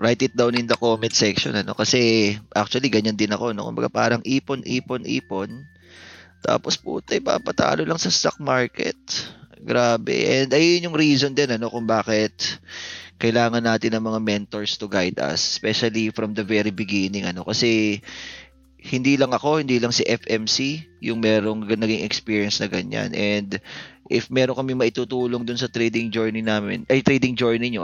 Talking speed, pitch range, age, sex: 170 wpm, 105-130 Hz, 20-39, male